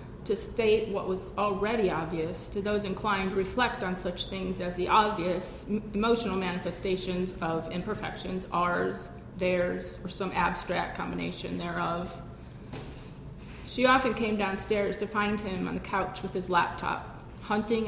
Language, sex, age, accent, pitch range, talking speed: English, female, 30-49, American, 185-225 Hz, 140 wpm